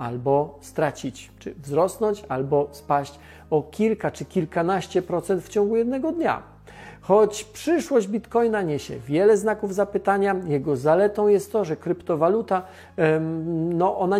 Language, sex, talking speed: Polish, male, 125 wpm